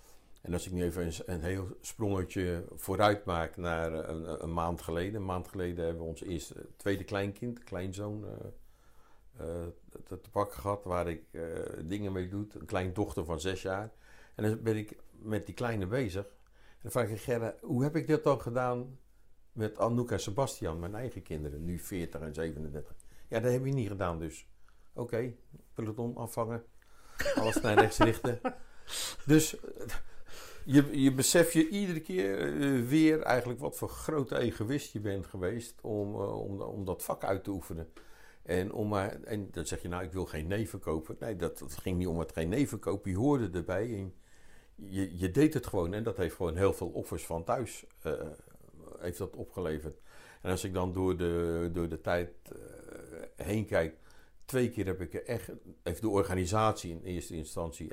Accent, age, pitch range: Dutch, 60-79, 85-115 Hz